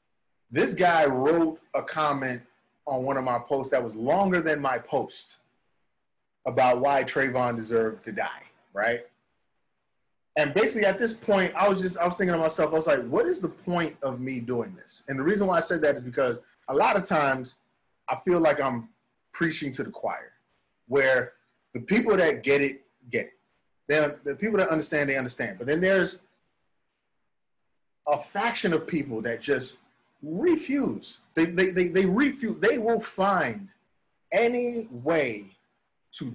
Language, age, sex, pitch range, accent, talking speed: English, 30-49, male, 130-190 Hz, American, 170 wpm